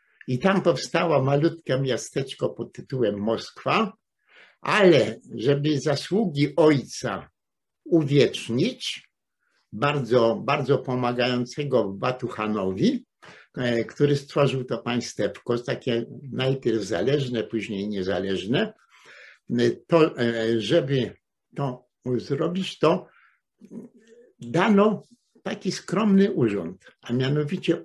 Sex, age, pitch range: male, 60-79, 115-160 Hz